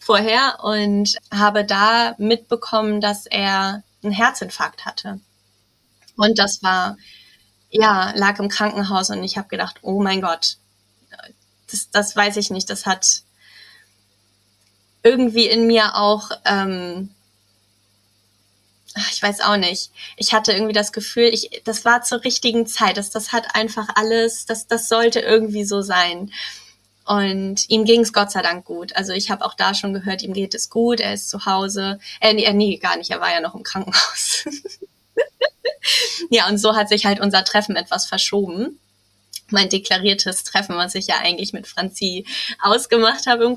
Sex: female